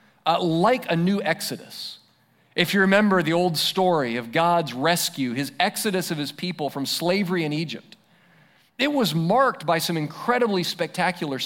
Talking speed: 155 wpm